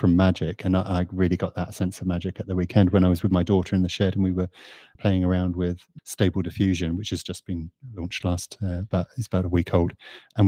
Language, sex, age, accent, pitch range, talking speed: English, male, 30-49, British, 90-100 Hz, 250 wpm